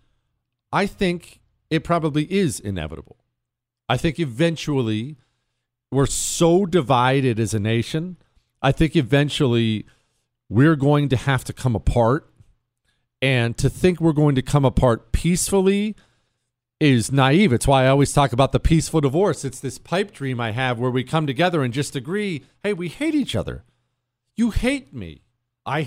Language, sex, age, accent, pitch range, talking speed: English, male, 40-59, American, 120-175 Hz, 155 wpm